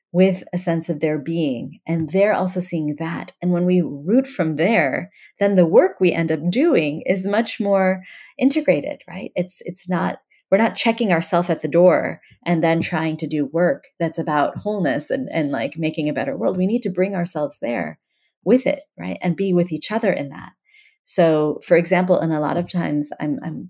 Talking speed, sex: 205 wpm, female